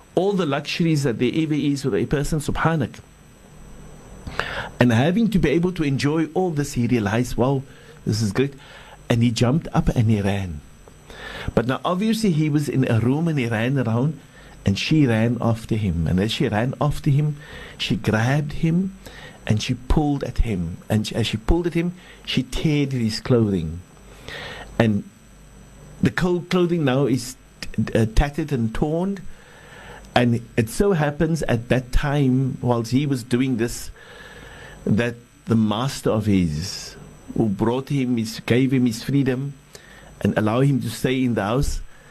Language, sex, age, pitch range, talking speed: English, male, 60-79, 110-145 Hz, 165 wpm